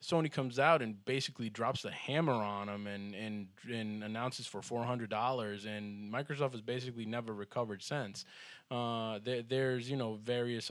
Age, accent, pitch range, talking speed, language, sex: 20-39, American, 105-120 Hz, 175 wpm, English, male